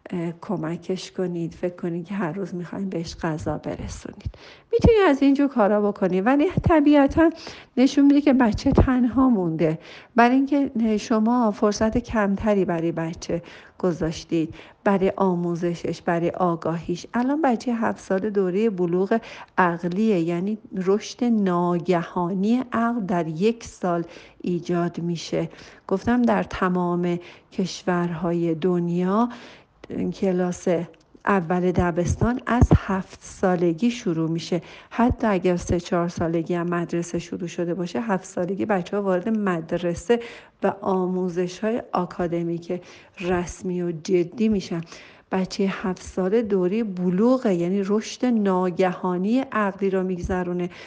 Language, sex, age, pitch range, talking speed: Persian, female, 50-69, 175-220 Hz, 115 wpm